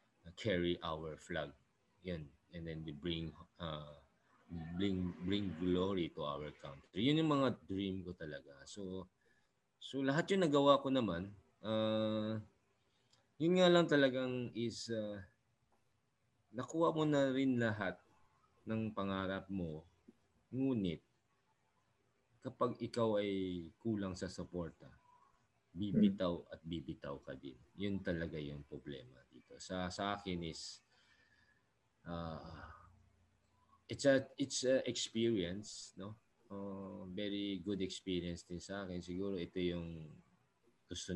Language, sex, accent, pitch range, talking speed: English, male, Filipino, 85-115 Hz, 120 wpm